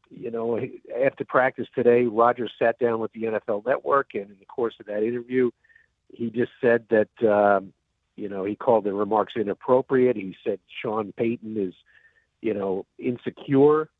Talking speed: 165 wpm